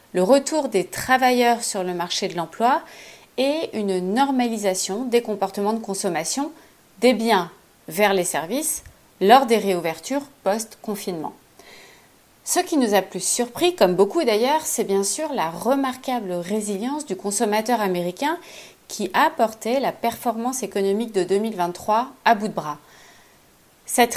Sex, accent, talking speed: female, French, 140 wpm